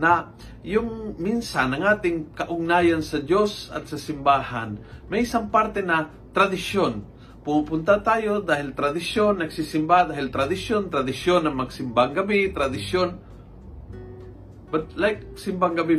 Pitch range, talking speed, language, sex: 130-195 Hz, 115 wpm, Filipino, male